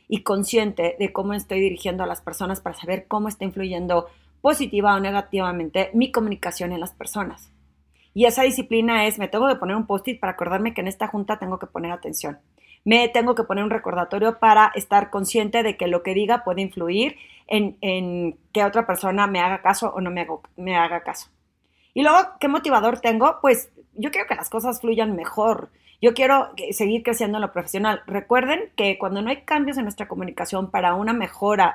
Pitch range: 185-230 Hz